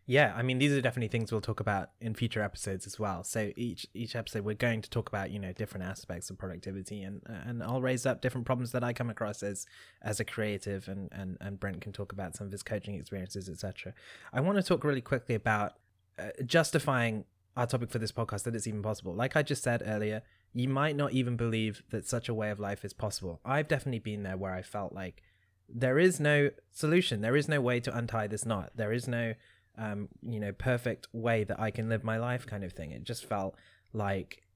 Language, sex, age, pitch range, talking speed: English, male, 20-39, 100-120 Hz, 235 wpm